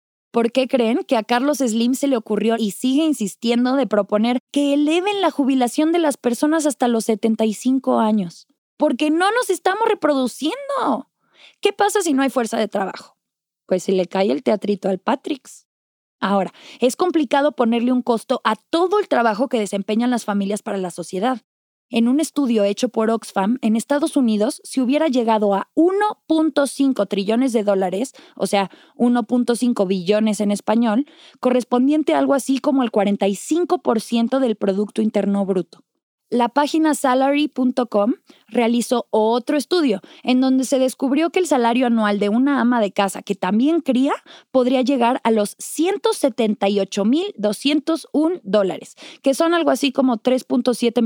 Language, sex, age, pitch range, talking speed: Spanish, female, 20-39, 220-295 Hz, 155 wpm